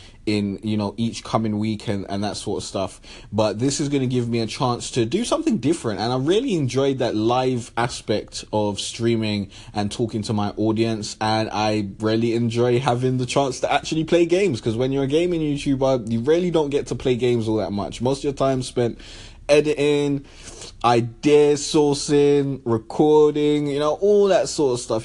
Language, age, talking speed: English, 20-39, 195 wpm